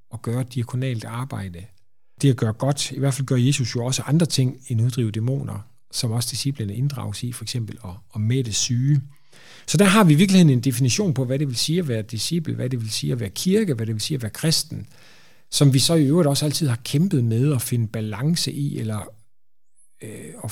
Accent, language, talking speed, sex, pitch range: native, Danish, 225 wpm, male, 110-140 Hz